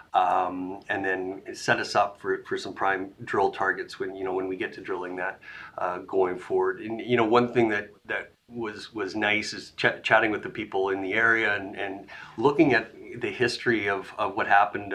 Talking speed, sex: 210 wpm, male